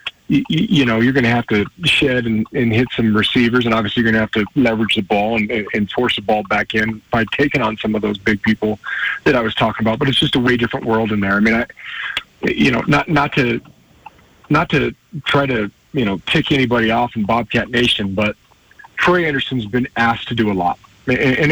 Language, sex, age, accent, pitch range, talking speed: English, male, 40-59, American, 115-150 Hz, 230 wpm